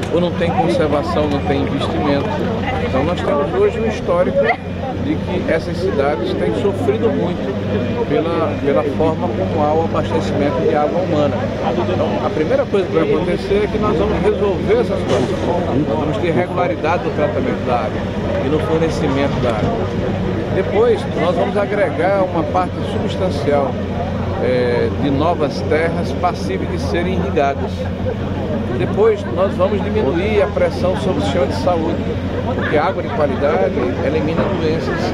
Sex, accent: male, Brazilian